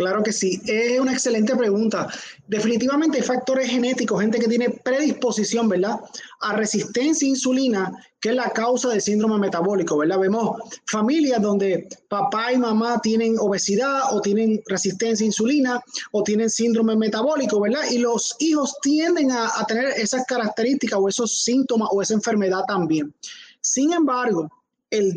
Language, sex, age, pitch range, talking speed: Spanish, male, 20-39, 200-255 Hz, 155 wpm